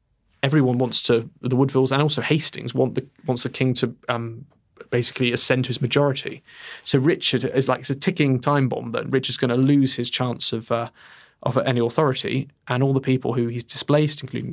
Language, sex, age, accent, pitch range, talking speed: English, male, 20-39, British, 120-140 Hz, 200 wpm